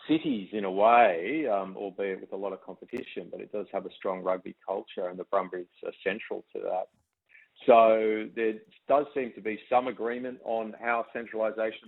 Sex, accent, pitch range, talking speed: male, Australian, 95-110 Hz, 185 wpm